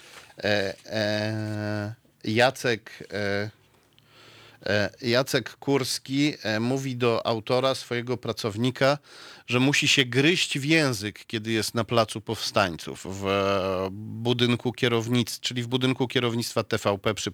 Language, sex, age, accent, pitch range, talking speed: Polish, male, 40-59, native, 110-135 Hz, 85 wpm